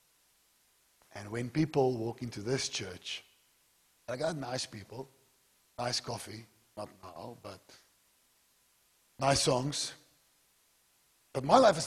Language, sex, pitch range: English, male, 110-145 Hz